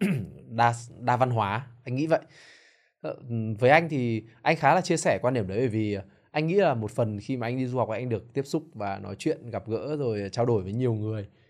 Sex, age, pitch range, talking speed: male, 20-39, 110-140 Hz, 240 wpm